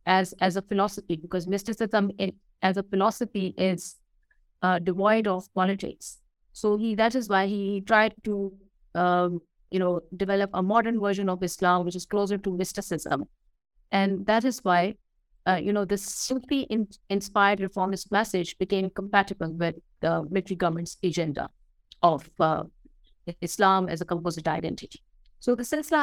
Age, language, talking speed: 50-69, English, 155 wpm